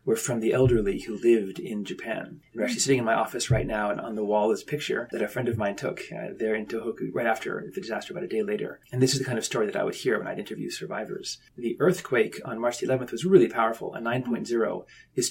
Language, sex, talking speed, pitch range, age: English, male, 265 wpm, 115-130 Hz, 30-49